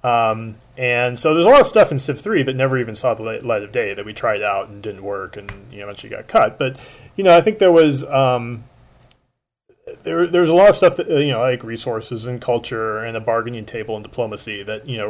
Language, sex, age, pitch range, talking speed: English, male, 30-49, 120-145 Hz, 255 wpm